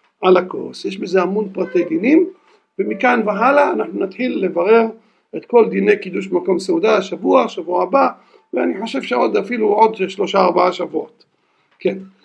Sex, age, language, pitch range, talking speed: male, 60-79, Hebrew, 190-255 Hz, 145 wpm